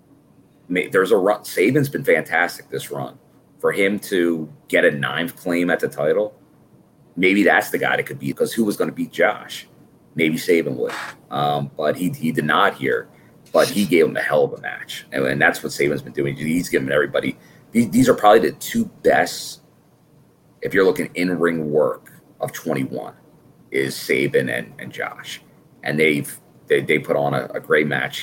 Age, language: 30-49, English